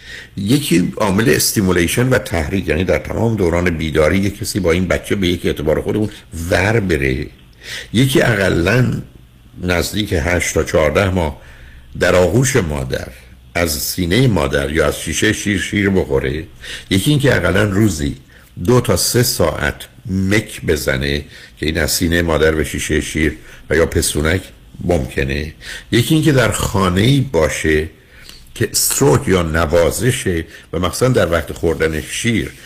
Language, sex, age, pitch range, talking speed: Persian, male, 60-79, 75-105 Hz, 140 wpm